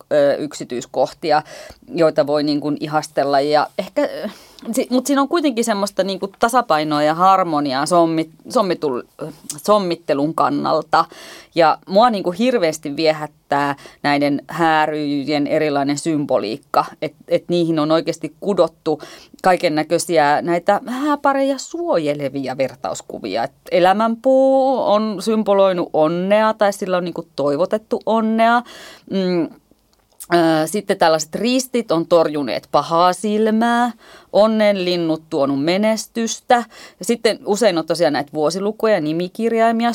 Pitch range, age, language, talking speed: 150-210 Hz, 30-49, Finnish, 100 wpm